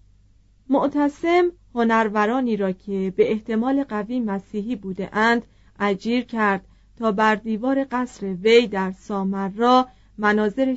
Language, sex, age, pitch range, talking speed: Persian, female, 40-59, 195-255 Hz, 110 wpm